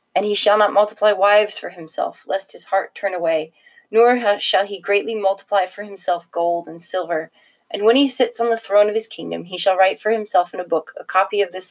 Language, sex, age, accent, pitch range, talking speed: English, female, 30-49, American, 175-210 Hz, 230 wpm